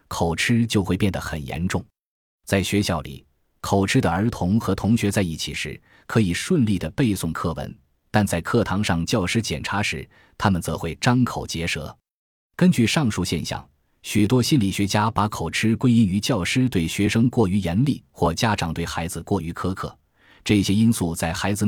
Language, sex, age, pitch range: Chinese, male, 20-39, 85-115 Hz